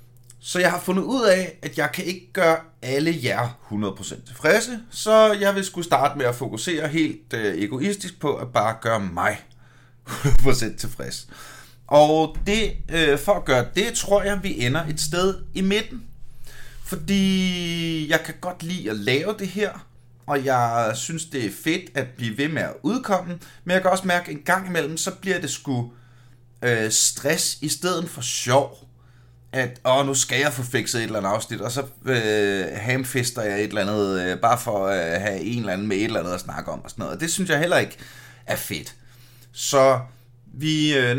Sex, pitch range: male, 120-175 Hz